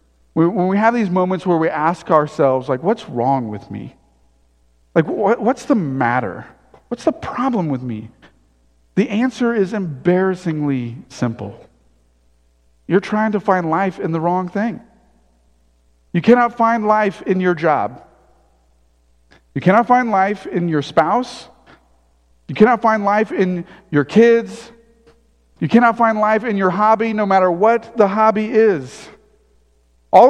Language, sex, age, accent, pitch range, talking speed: English, male, 40-59, American, 130-215 Hz, 145 wpm